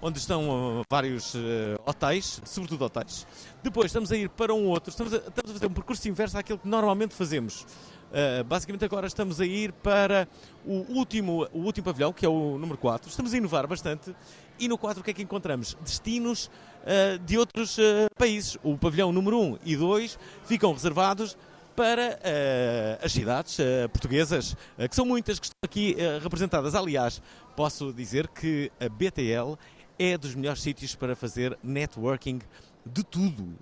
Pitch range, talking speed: 130-215 Hz, 175 wpm